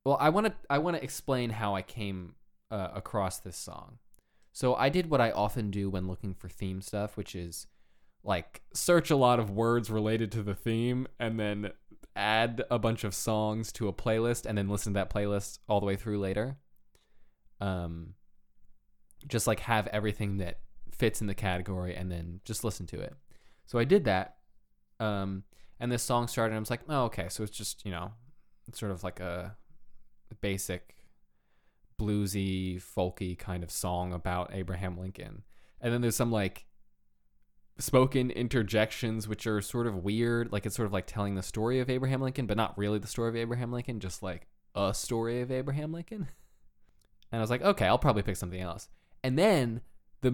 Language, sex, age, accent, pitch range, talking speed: English, male, 20-39, American, 95-120 Hz, 190 wpm